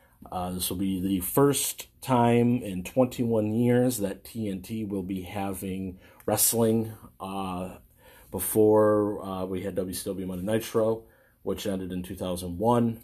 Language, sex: English, male